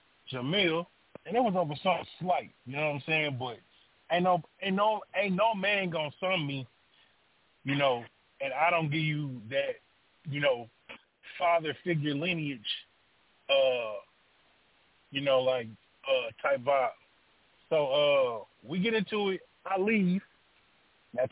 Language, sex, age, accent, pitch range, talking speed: English, male, 20-39, American, 155-215 Hz, 145 wpm